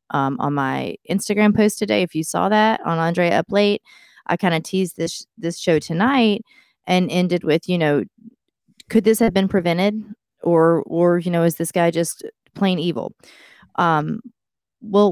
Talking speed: 180 wpm